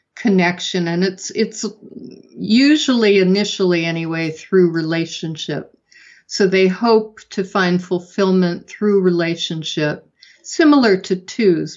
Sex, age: female, 50-69